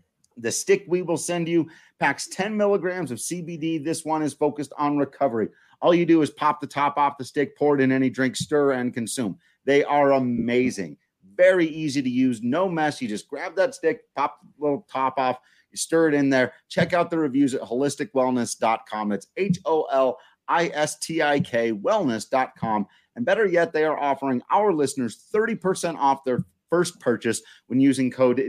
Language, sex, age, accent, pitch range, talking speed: English, male, 30-49, American, 120-155 Hz, 175 wpm